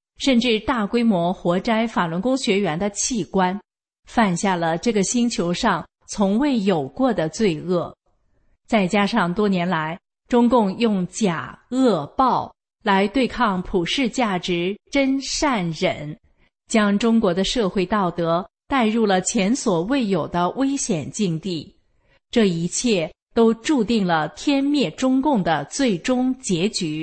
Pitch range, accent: 180-240 Hz, Chinese